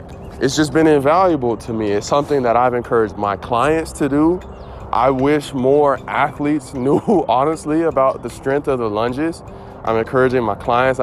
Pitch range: 115-145 Hz